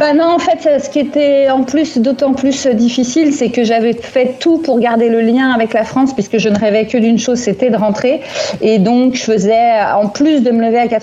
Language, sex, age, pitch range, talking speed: French, female, 40-59, 200-250 Hz, 240 wpm